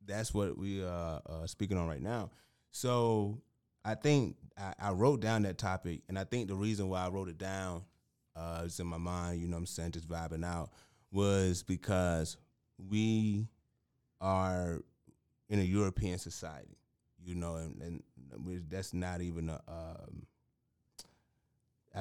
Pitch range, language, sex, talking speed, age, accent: 85-110 Hz, English, male, 155 wpm, 30-49, American